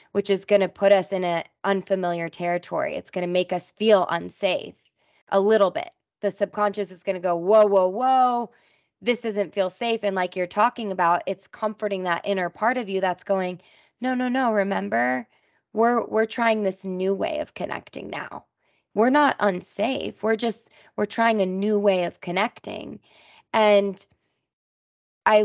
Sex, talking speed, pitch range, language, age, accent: female, 175 wpm, 180-210 Hz, English, 20-39, American